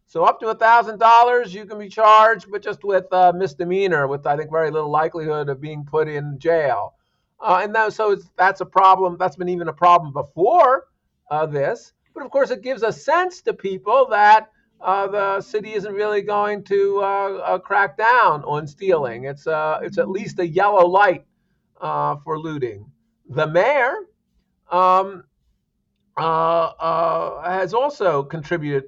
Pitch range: 155-205 Hz